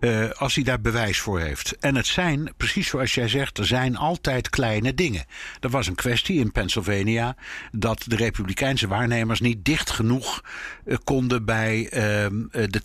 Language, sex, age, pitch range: Dutch, male, 60-79, 110-140 Hz